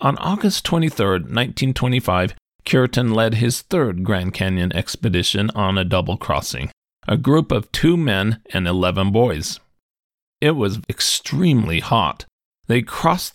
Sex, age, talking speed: male, 40-59, 125 wpm